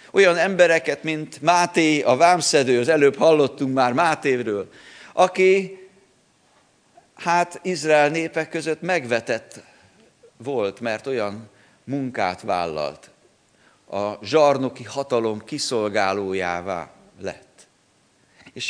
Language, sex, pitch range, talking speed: Hungarian, male, 140-185 Hz, 90 wpm